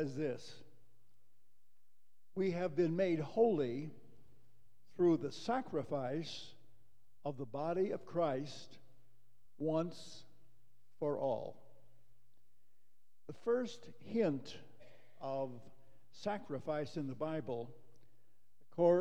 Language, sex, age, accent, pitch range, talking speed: English, male, 60-79, American, 120-155 Hz, 85 wpm